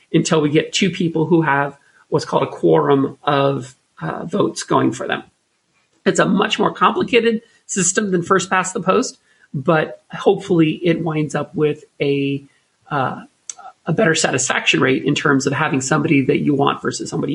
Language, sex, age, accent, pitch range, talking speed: English, male, 40-59, American, 150-180 Hz, 175 wpm